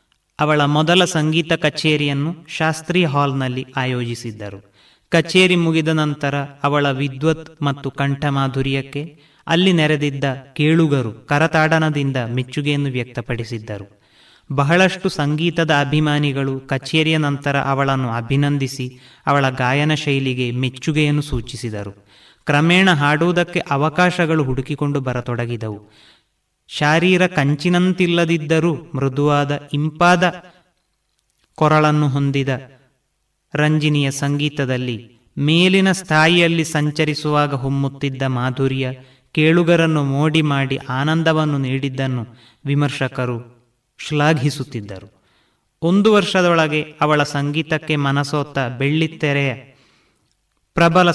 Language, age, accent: Kannada, 30-49, native